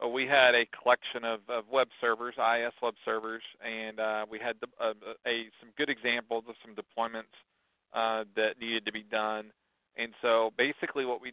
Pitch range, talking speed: 115-125 Hz, 185 wpm